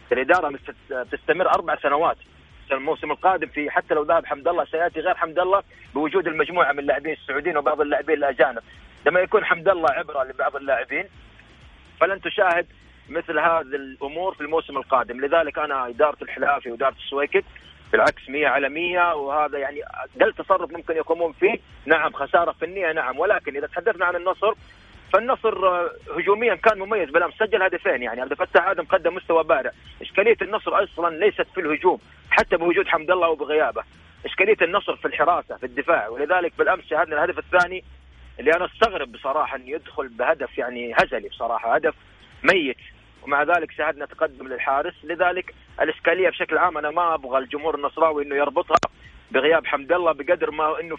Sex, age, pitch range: male, 30-49, 145-185 Hz